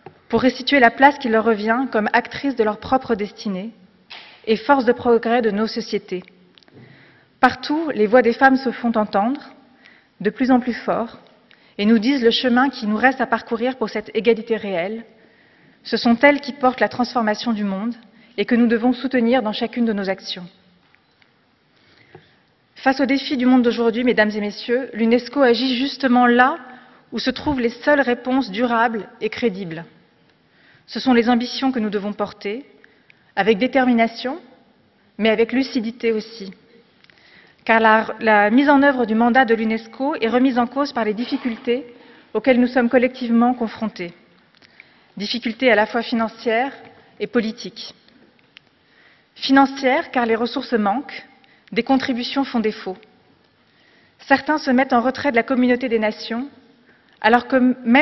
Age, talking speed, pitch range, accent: 30-49, 155 wpm, 225-260 Hz, French